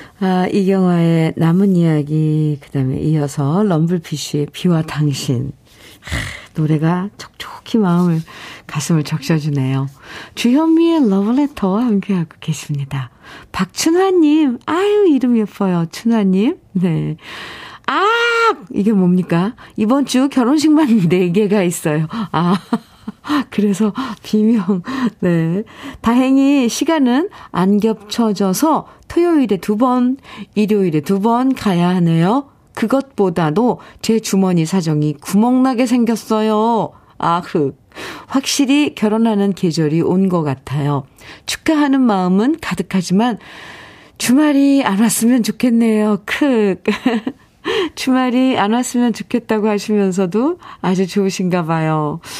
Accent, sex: native, female